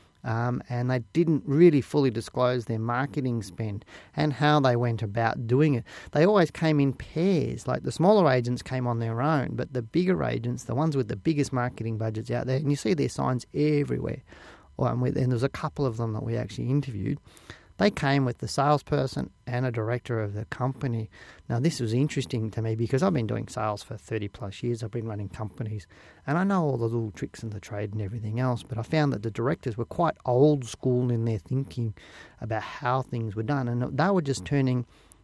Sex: male